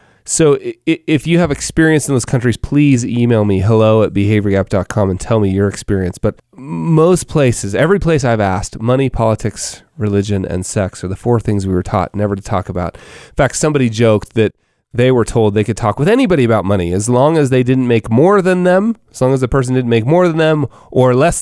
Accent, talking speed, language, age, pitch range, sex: American, 215 wpm, English, 30-49, 105-140 Hz, male